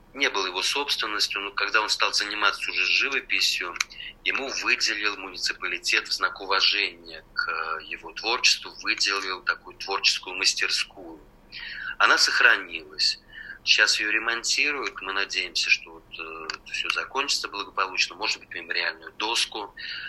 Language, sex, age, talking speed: Russian, male, 30-49, 120 wpm